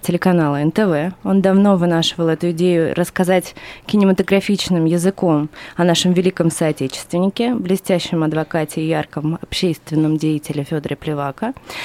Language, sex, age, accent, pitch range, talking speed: Russian, female, 20-39, native, 170-200 Hz, 110 wpm